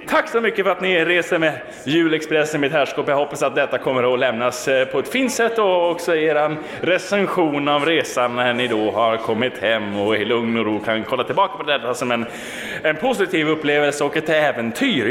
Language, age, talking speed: Swedish, 10-29, 205 wpm